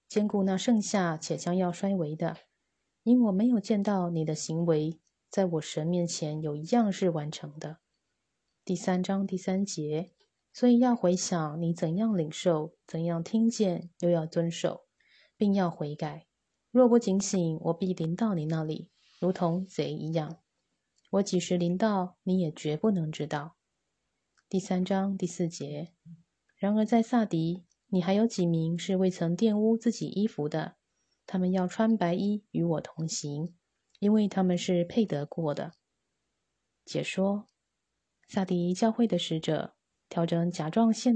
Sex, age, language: female, 20-39, Chinese